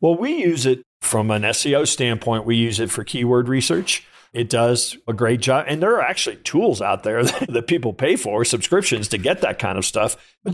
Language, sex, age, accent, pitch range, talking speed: English, male, 50-69, American, 115-130 Hz, 215 wpm